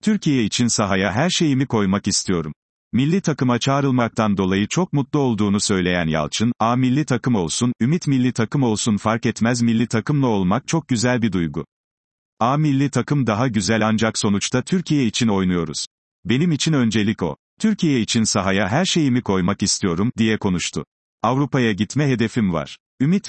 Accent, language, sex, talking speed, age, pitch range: native, Turkish, male, 155 wpm, 40-59, 100-135 Hz